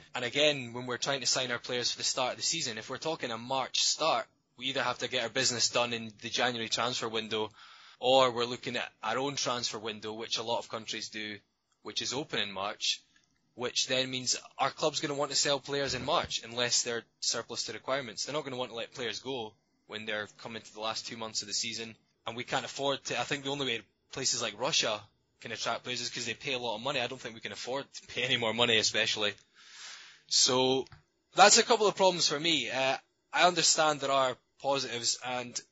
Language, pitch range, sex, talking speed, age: English, 115-140 Hz, male, 240 wpm, 10-29